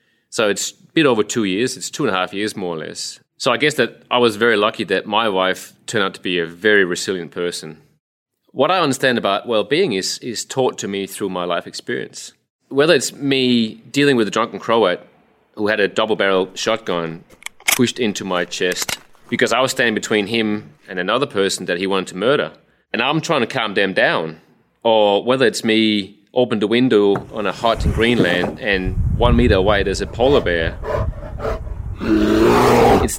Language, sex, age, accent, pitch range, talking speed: English, male, 30-49, Australian, 95-120 Hz, 195 wpm